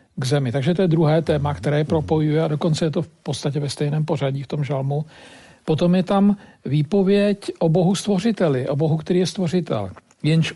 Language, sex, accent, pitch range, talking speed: Czech, male, native, 150-180 Hz, 195 wpm